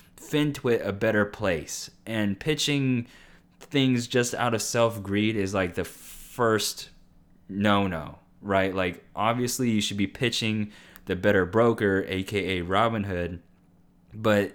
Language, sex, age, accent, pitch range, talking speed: English, male, 20-39, American, 90-115 Hz, 120 wpm